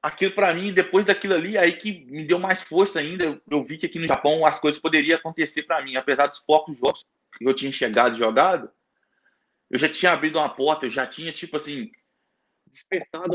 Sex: male